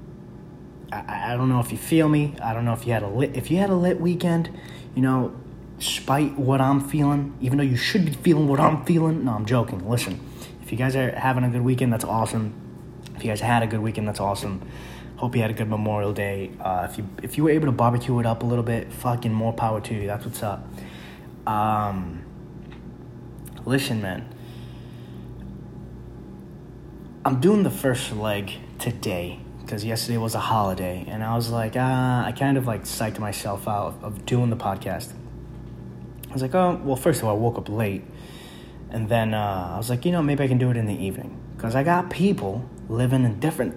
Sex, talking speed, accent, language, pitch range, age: male, 210 wpm, American, English, 105-130 Hz, 20-39